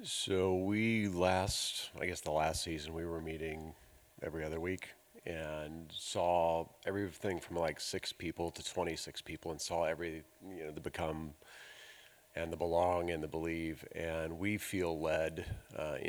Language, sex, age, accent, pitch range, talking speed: English, male, 40-59, American, 80-90 Hz, 155 wpm